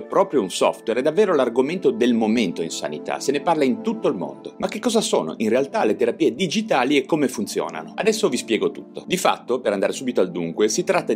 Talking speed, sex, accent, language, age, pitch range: 225 wpm, male, native, Italian, 30-49, 160-215 Hz